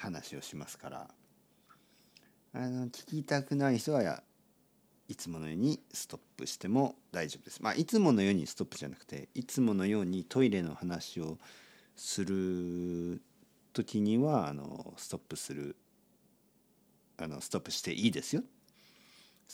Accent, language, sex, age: native, Japanese, male, 50-69